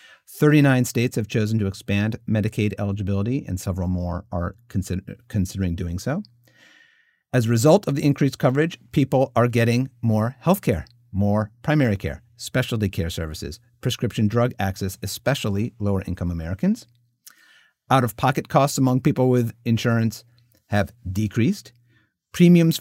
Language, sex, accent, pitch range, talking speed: English, male, American, 100-130 Hz, 130 wpm